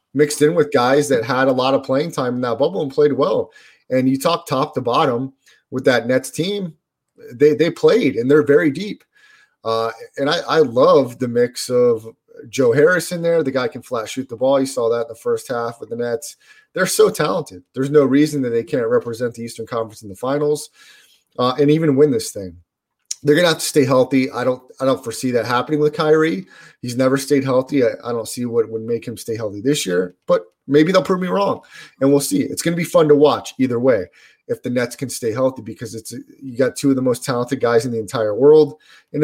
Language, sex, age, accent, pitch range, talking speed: English, male, 30-49, American, 125-155 Hz, 235 wpm